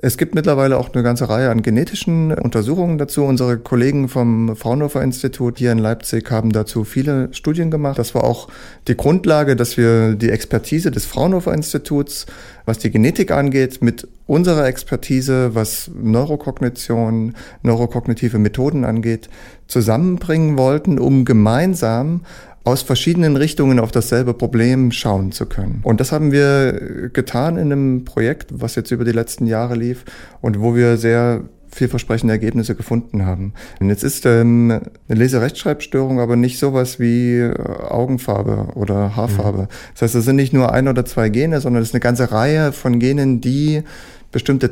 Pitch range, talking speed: 115-140 Hz, 155 wpm